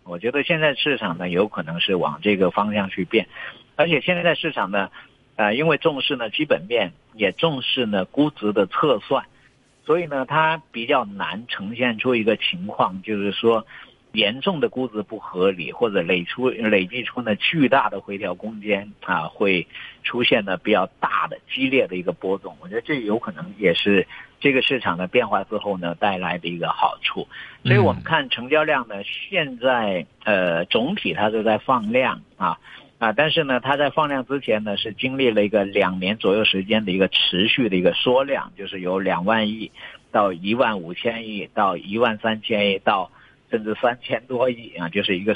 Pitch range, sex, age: 100-130 Hz, male, 50-69